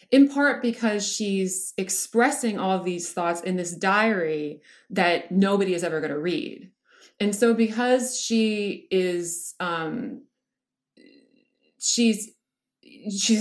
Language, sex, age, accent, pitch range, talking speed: English, female, 30-49, American, 170-225 Hz, 110 wpm